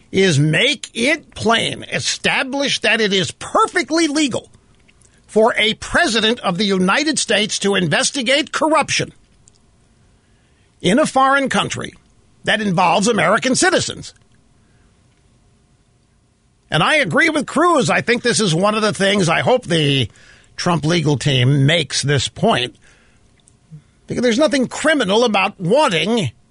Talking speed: 125 wpm